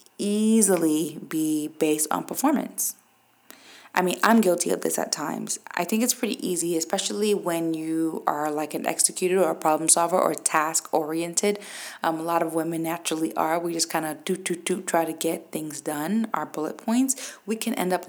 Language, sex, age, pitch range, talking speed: English, female, 20-39, 160-200 Hz, 190 wpm